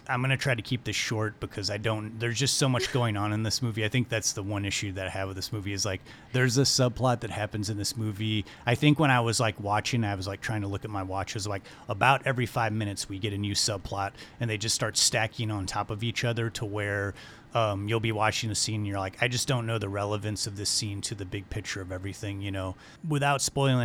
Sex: male